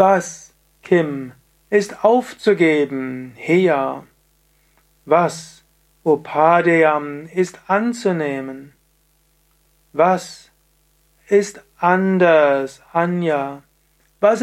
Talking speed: 60 wpm